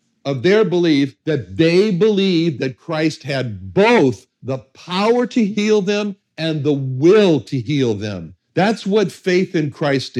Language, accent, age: English, American, 60-79